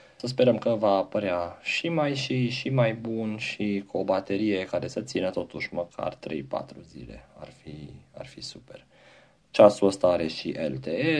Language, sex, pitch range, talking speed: Romanian, male, 80-115 Hz, 165 wpm